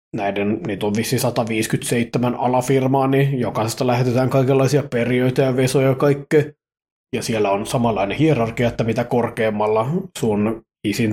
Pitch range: 115-135 Hz